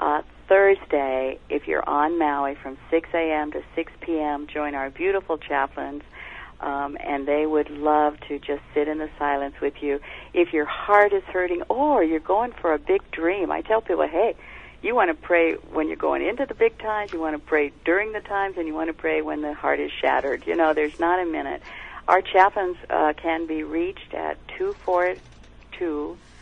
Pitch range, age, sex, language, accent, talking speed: 145-180 Hz, 60-79, female, English, American, 200 wpm